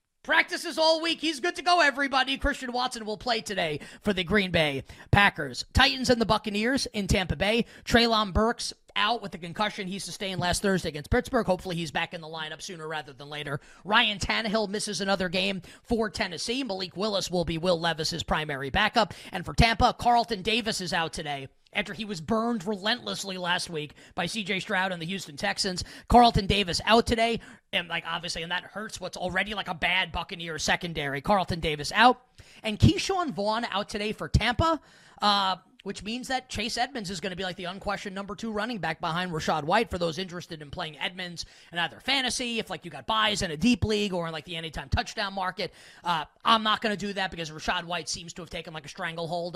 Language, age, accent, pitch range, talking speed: English, 20-39, American, 170-220 Hz, 210 wpm